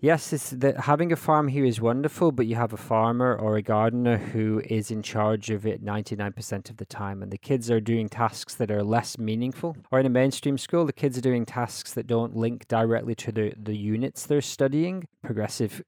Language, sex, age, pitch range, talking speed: English, male, 20-39, 110-135 Hz, 210 wpm